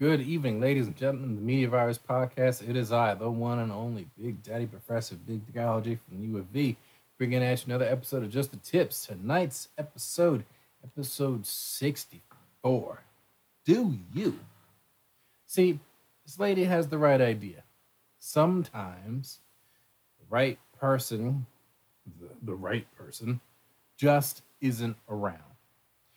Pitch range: 105-135 Hz